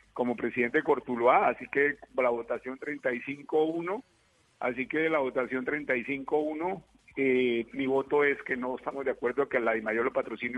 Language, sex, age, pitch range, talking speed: Spanish, male, 50-69, 120-145 Hz, 170 wpm